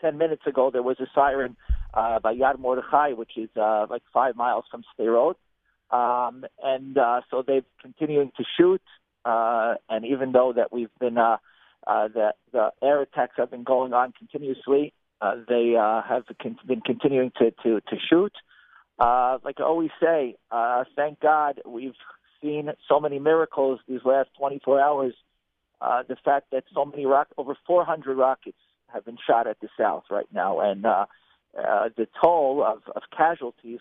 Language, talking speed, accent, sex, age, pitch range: English, 175 wpm, American, male, 50-69, 125-150 Hz